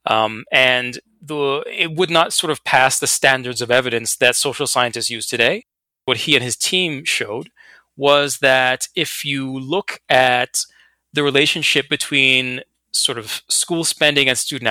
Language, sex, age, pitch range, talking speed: English, male, 30-49, 125-155 Hz, 160 wpm